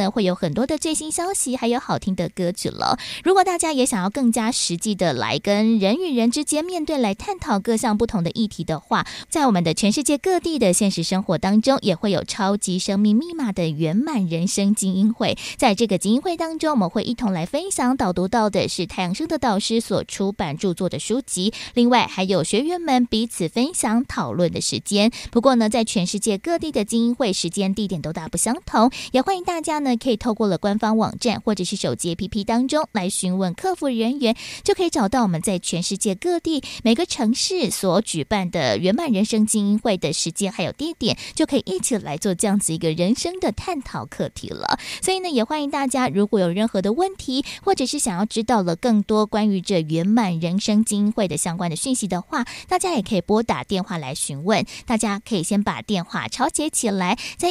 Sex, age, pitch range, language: female, 20-39, 190-255 Hz, Chinese